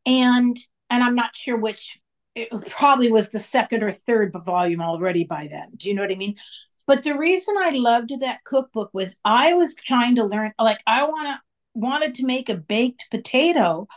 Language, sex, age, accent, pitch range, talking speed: English, female, 50-69, American, 215-305 Hz, 195 wpm